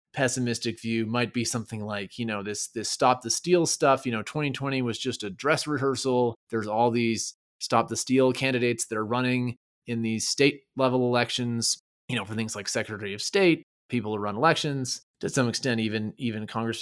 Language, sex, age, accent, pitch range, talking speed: English, male, 30-49, American, 115-145 Hz, 195 wpm